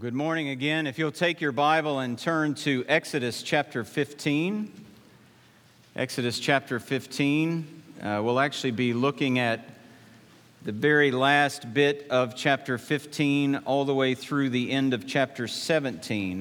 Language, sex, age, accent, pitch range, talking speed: English, male, 50-69, American, 115-145 Hz, 145 wpm